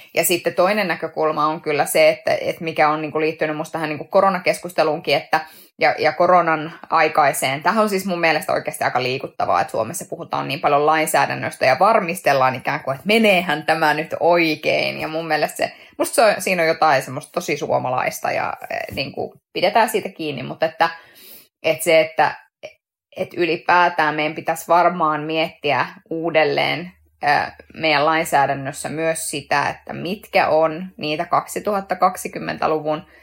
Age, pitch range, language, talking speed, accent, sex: 20-39, 155-175 Hz, Finnish, 145 wpm, native, female